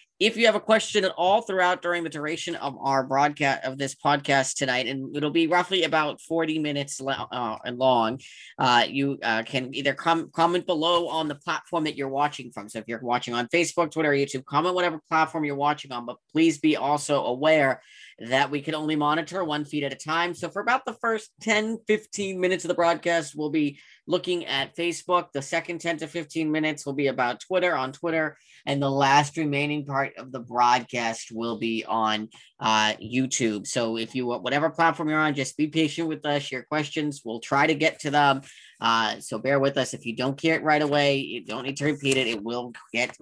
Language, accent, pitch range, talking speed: English, American, 130-165 Hz, 215 wpm